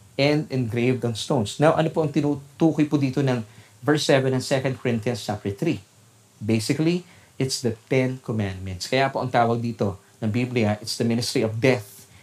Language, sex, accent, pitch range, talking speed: Filipino, male, native, 115-150 Hz, 175 wpm